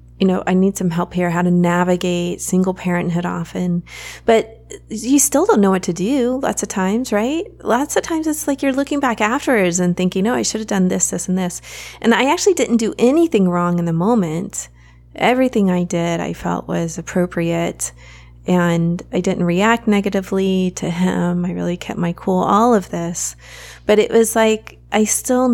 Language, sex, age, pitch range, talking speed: English, female, 30-49, 170-220 Hz, 195 wpm